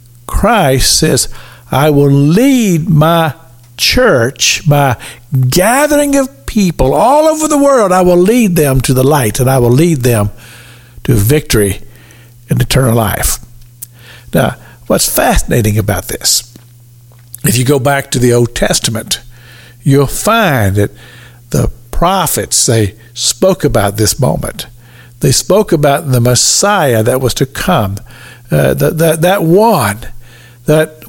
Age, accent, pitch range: 60-79, American, 120-165 Hz